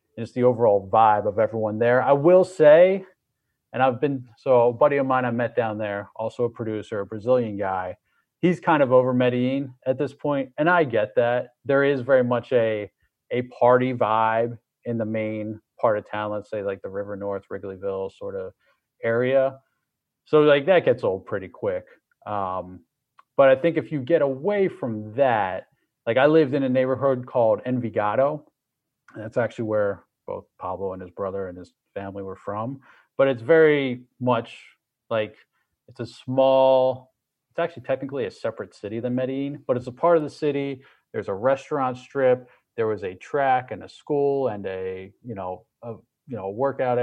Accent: American